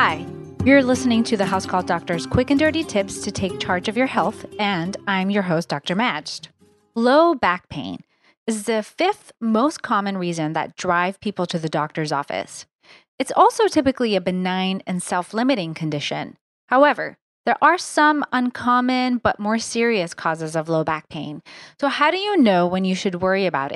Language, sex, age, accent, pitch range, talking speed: English, female, 30-49, American, 175-260 Hz, 180 wpm